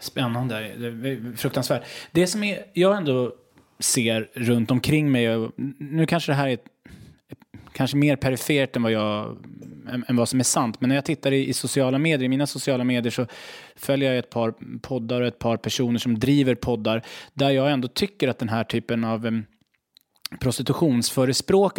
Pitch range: 120-155 Hz